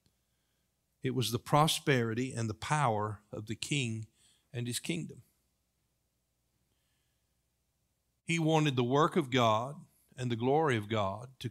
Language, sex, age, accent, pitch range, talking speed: English, male, 50-69, American, 115-160 Hz, 130 wpm